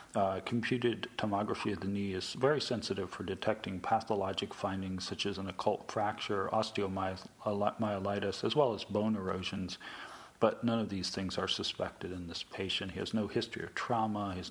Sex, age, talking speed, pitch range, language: male, 40-59, 175 wpm, 95-105 Hz, English